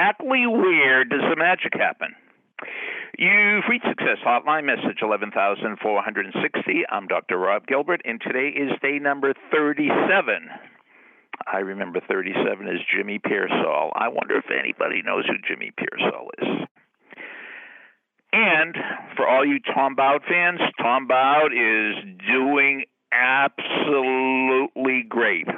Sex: male